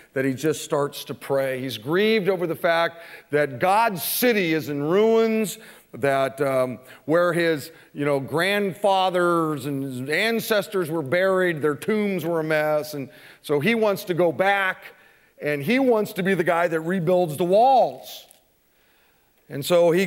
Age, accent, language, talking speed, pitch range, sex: 40-59, American, English, 165 wpm, 135-190 Hz, male